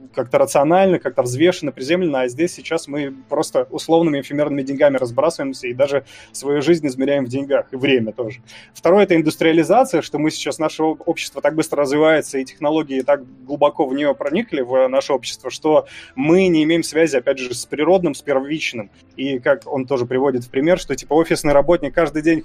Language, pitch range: Russian, 135-175 Hz